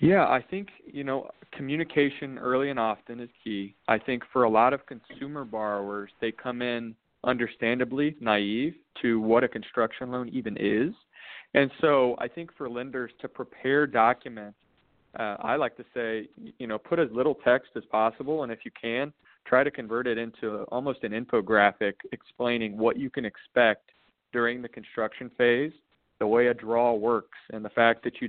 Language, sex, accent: English, male, American